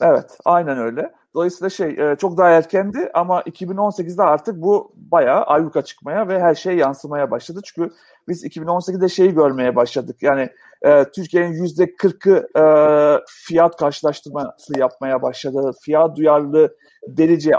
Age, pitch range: 40-59, 145-175 Hz